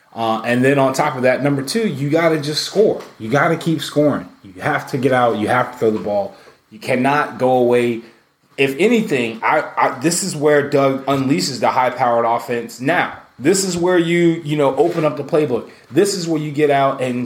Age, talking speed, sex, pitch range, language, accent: 20-39, 225 wpm, male, 125-150 Hz, English, American